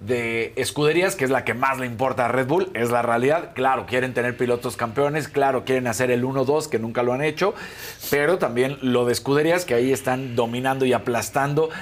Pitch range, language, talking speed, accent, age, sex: 115-140 Hz, Spanish, 210 wpm, Mexican, 40-59, male